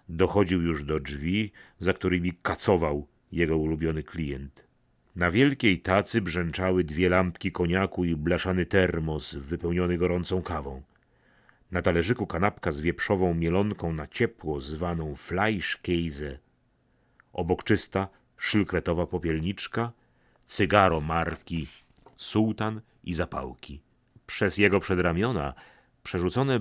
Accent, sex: native, male